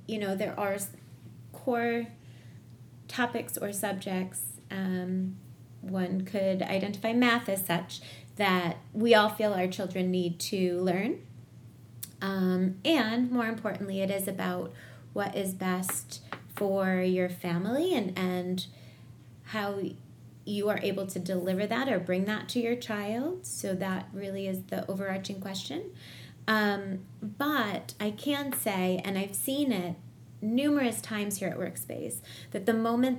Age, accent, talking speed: 30-49, American, 135 wpm